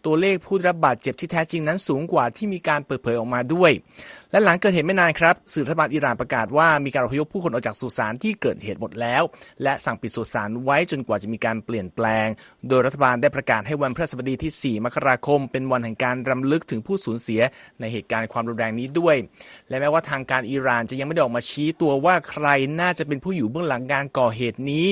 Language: Thai